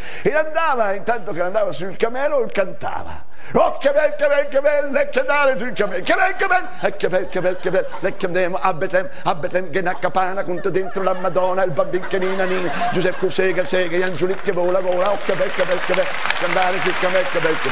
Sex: male